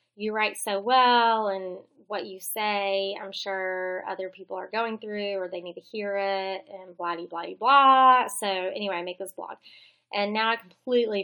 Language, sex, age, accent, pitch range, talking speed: English, female, 20-39, American, 180-210 Hz, 190 wpm